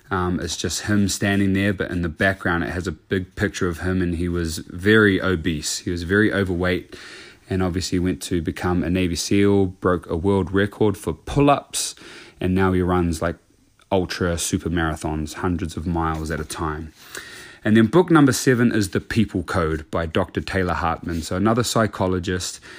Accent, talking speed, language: Australian, 185 wpm, English